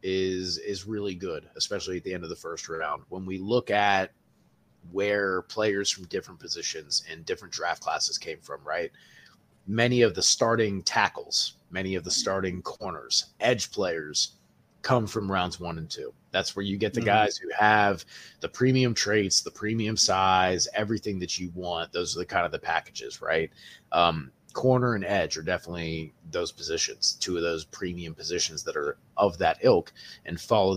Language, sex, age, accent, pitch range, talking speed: English, male, 30-49, American, 90-110 Hz, 180 wpm